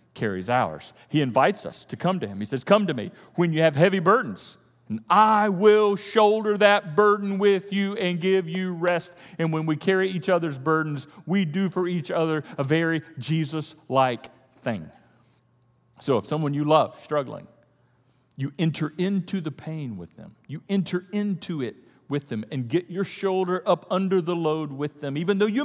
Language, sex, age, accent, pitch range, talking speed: English, male, 40-59, American, 160-250 Hz, 185 wpm